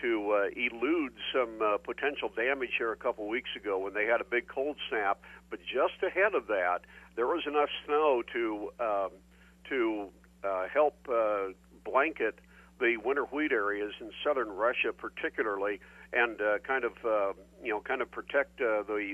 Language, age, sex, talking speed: English, 50-69, male, 170 wpm